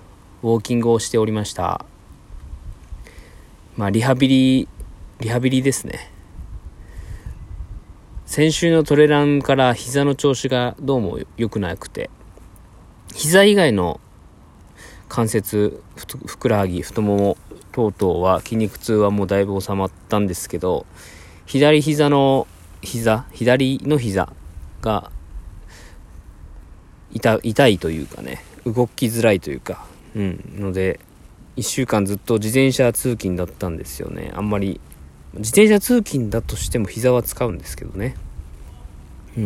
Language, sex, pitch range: Japanese, male, 85-120 Hz